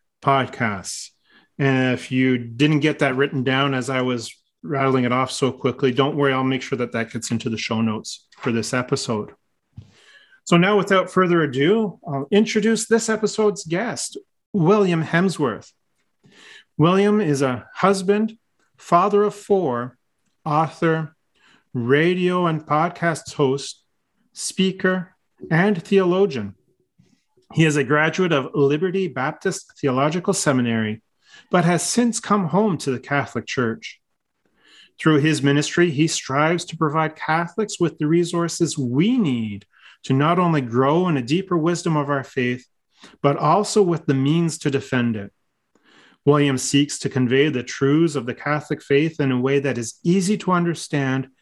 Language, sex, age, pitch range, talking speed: English, male, 40-59, 130-175 Hz, 150 wpm